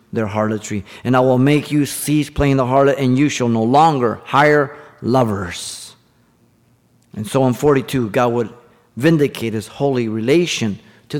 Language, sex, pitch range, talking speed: English, male, 115-155 Hz, 155 wpm